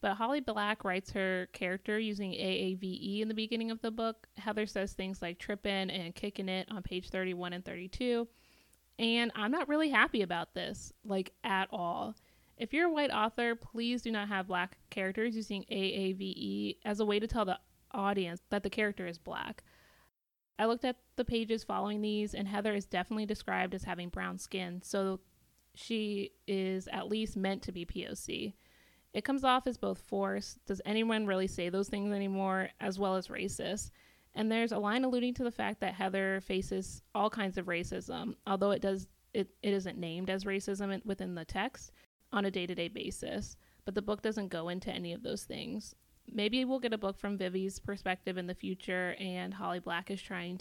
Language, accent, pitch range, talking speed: English, American, 185-220 Hz, 190 wpm